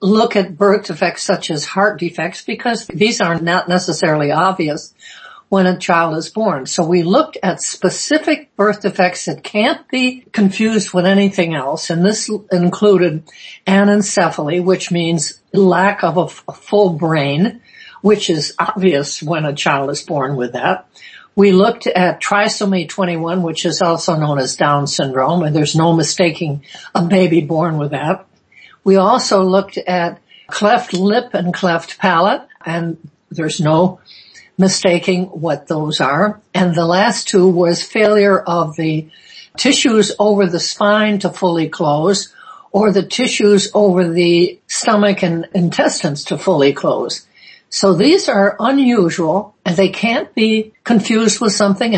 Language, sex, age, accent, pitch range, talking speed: English, female, 60-79, American, 170-205 Hz, 150 wpm